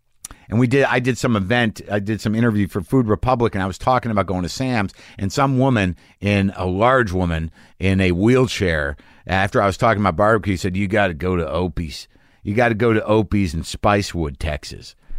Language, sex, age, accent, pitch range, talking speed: English, male, 50-69, American, 90-115 Hz, 205 wpm